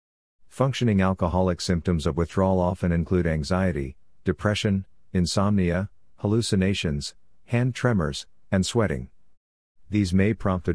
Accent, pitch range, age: American, 80-100 Hz, 50-69